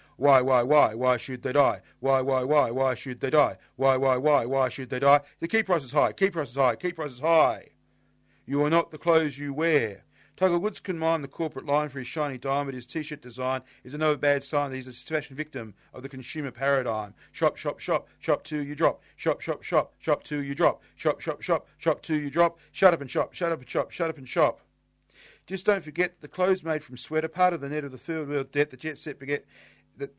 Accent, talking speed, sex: Australian, 255 wpm, male